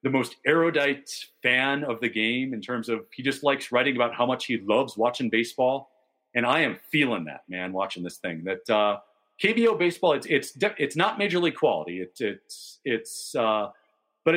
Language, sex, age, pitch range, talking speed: English, male, 40-59, 120-170 Hz, 195 wpm